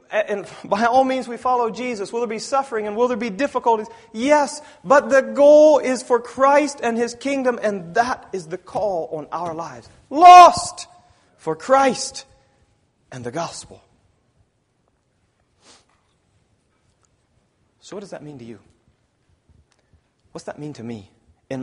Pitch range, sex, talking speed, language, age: 160-240 Hz, male, 145 wpm, English, 40-59